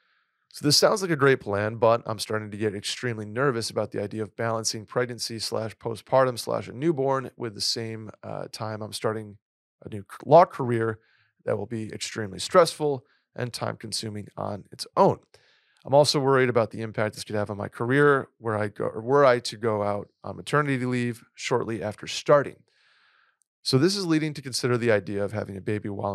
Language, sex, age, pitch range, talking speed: English, male, 30-49, 105-130 Hz, 200 wpm